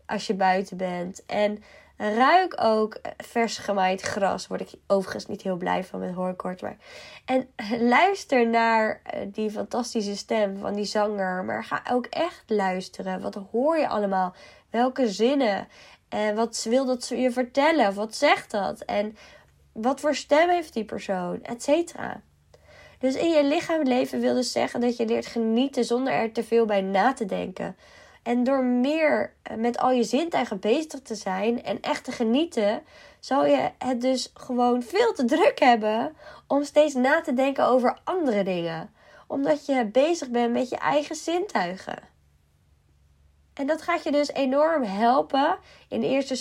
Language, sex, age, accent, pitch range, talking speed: Dutch, female, 20-39, Dutch, 205-270 Hz, 165 wpm